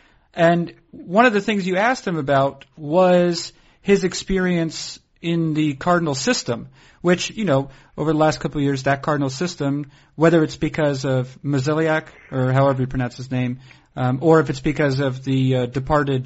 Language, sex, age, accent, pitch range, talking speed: English, male, 40-59, American, 135-170 Hz, 175 wpm